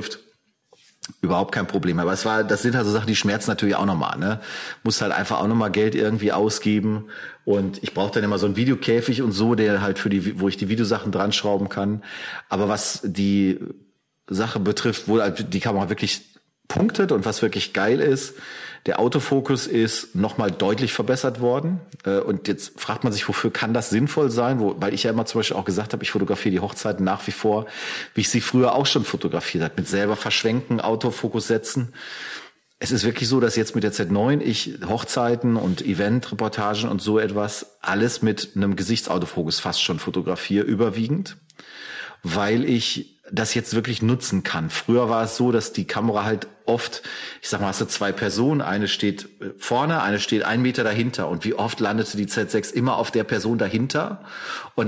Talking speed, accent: 190 wpm, German